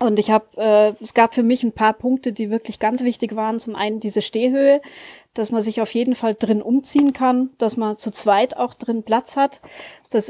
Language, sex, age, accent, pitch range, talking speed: German, female, 30-49, German, 215-255 Hz, 220 wpm